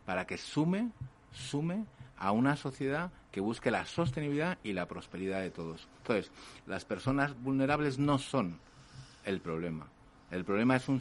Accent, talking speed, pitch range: Spanish, 155 wpm, 115-155 Hz